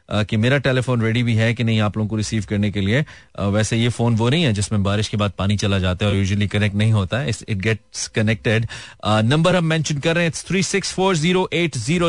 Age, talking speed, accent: 30-49, 215 wpm, native